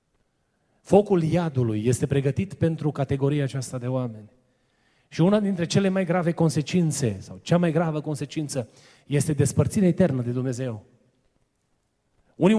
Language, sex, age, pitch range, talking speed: Romanian, male, 30-49, 180-245 Hz, 130 wpm